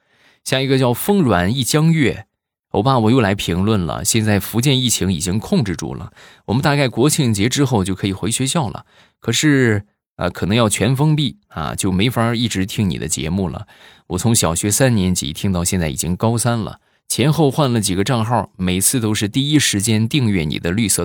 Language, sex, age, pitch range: Chinese, male, 20-39, 90-125 Hz